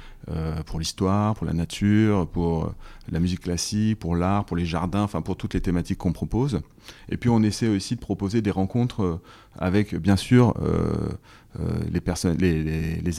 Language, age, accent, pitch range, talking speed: French, 30-49, French, 85-105 Hz, 175 wpm